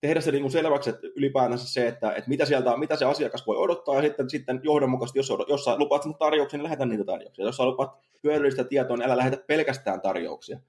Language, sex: Finnish, male